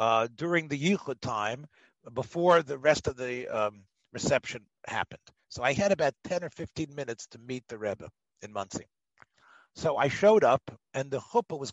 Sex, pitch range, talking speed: male, 130-190 Hz, 180 wpm